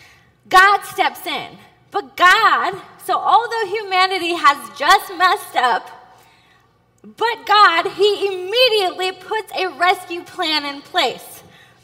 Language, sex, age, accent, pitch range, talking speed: English, female, 20-39, American, 335-395 Hz, 110 wpm